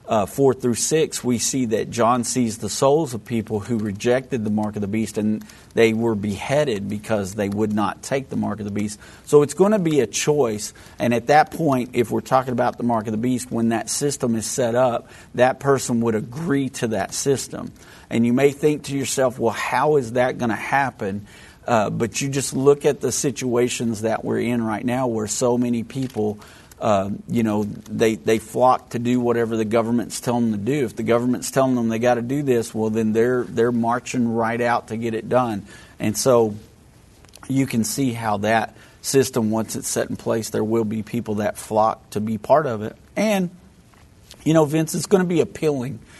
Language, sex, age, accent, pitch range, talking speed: English, male, 50-69, American, 110-135 Hz, 215 wpm